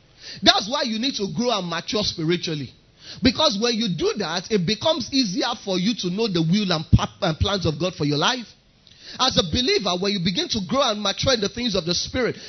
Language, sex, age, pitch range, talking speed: English, male, 30-49, 190-265 Hz, 220 wpm